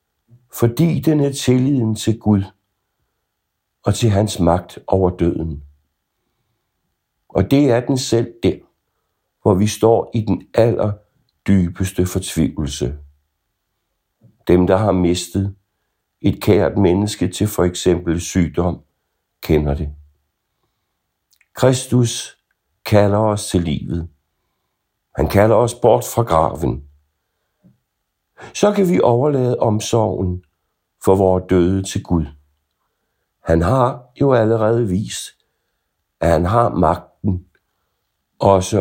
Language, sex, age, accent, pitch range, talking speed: Danish, male, 60-79, native, 80-110 Hz, 105 wpm